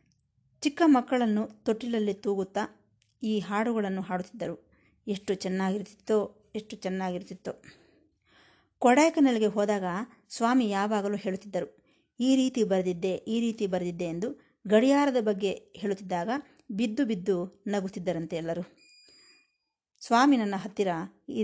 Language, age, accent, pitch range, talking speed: Kannada, 20-39, native, 190-250 Hz, 95 wpm